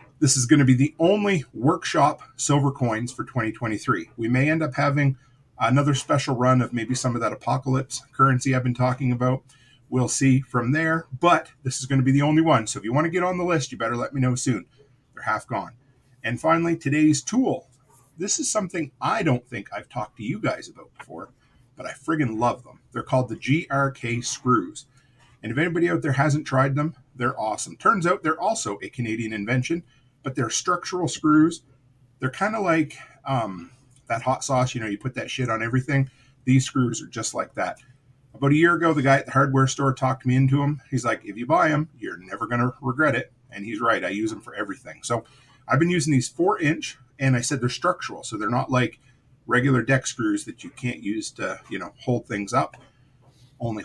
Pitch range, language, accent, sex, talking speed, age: 125-145 Hz, English, American, male, 215 wpm, 40-59